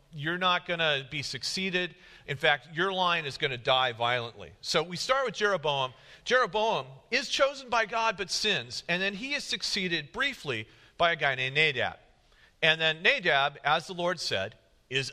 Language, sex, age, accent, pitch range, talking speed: English, male, 40-59, American, 130-175 Hz, 185 wpm